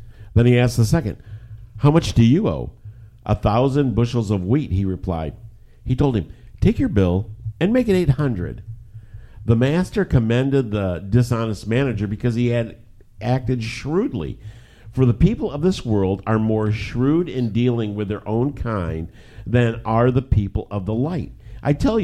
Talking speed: 170 wpm